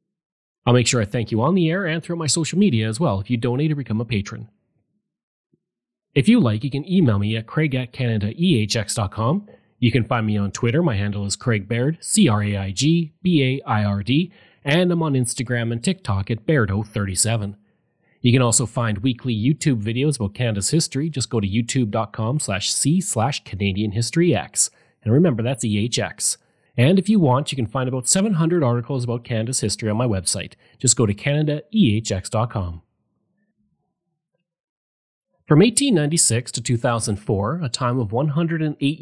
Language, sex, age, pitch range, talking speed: English, male, 30-49, 110-155 Hz, 160 wpm